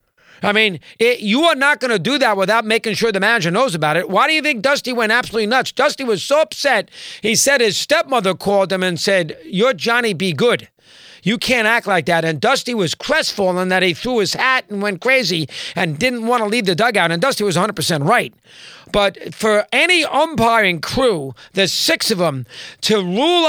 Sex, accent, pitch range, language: male, American, 195-255 Hz, English